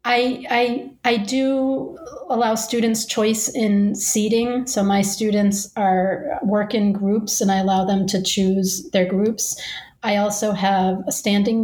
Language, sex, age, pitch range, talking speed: English, female, 40-59, 185-220 Hz, 145 wpm